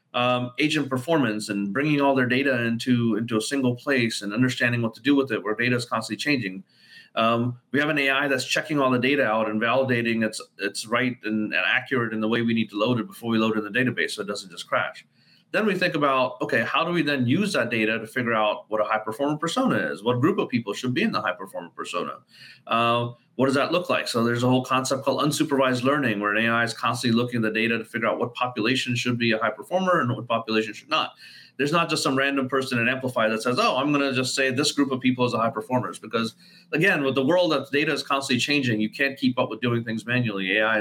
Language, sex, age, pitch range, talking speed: English, male, 30-49, 115-135 Hz, 255 wpm